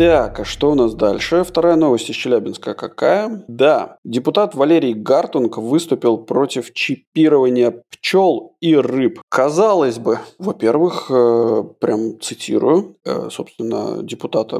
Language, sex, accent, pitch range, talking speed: Russian, male, native, 125-170 Hz, 125 wpm